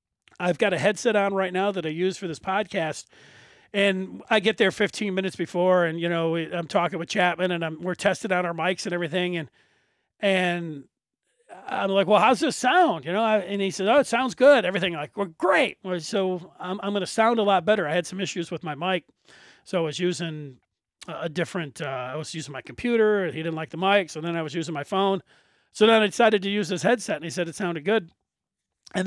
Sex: male